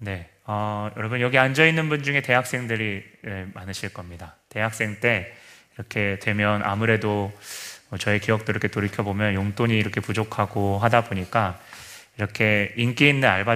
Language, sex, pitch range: Korean, male, 105-130 Hz